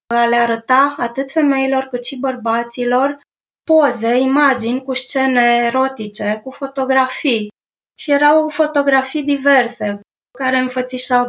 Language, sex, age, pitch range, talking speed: Romanian, female, 20-39, 230-270 Hz, 110 wpm